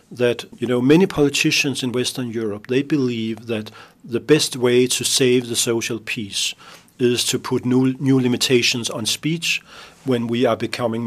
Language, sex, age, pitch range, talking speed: Finnish, male, 40-59, 115-140 Hz, 170 wpm